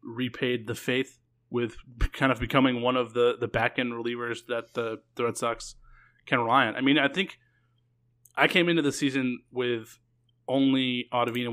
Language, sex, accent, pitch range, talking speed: English, male, American, 110-125 Hz, 170 wpm